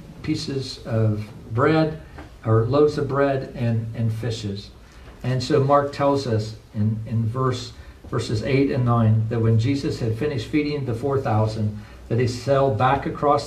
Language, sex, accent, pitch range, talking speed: English, male, American, 115-150 Hz, 155 wpm